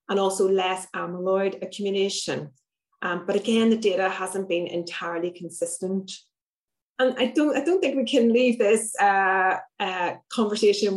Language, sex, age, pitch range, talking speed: English, female, 30-49, 180-210 Hz, 150 wpm